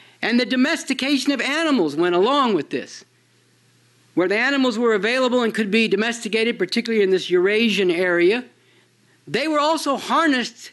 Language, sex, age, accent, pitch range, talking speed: English, male, 50-69, American, 210-270 Hz, 150 wpm